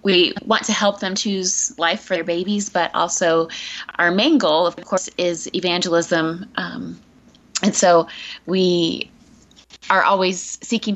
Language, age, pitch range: English, 20-39, 165-195 Hz